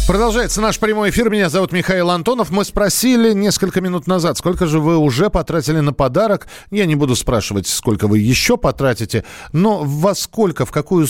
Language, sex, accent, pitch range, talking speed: Russian, male, native, 130-185 Hz, 180 wpm